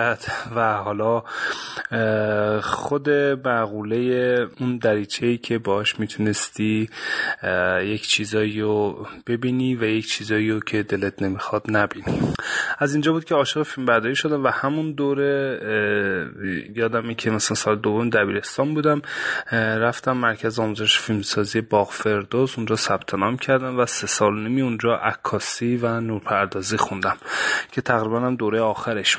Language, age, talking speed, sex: Persian, 30-49, 130 wpm, male